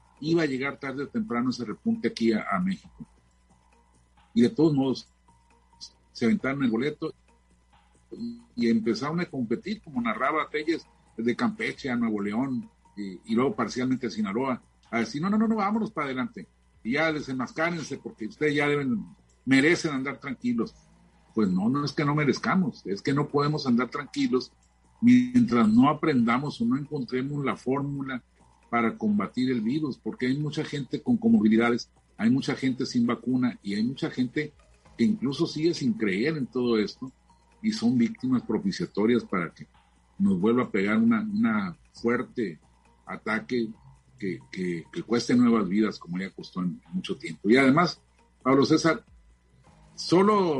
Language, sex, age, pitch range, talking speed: Spanish, male, 50-69, 120-185 Hz, 165 wpm